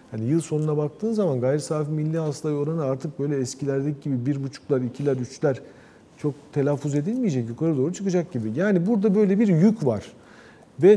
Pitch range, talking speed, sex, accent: 135-180 Hz, 175 wpm, male, native